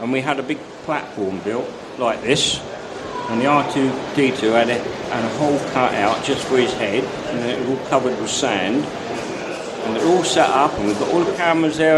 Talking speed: 210 wpm